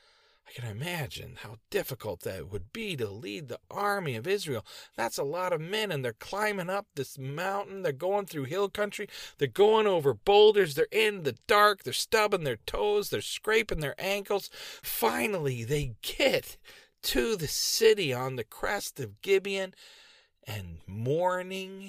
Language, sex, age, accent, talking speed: English, male, 40-59, American, 160 wpm